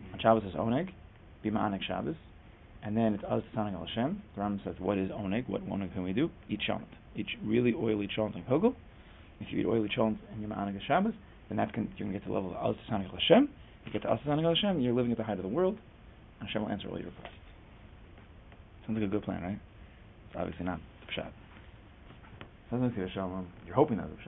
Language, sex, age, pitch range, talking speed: English, male, 30-49, 95-110 Hz, 220 wpm